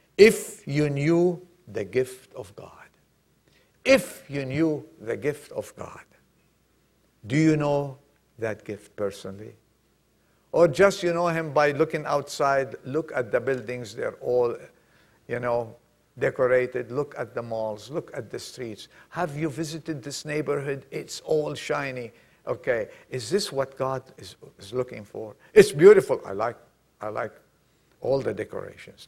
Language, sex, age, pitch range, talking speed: English, male, 60-79, 125-165 Hz, 145 wpm